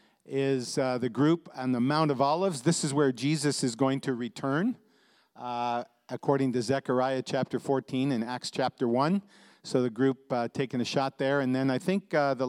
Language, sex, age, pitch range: English, male, 50-69, 125-150 Hz